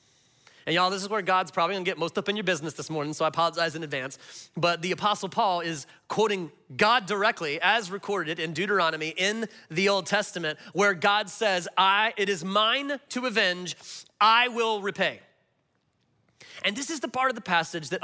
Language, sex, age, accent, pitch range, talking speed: English, male, 30-49, American, 150-220 Hz, 195 wpm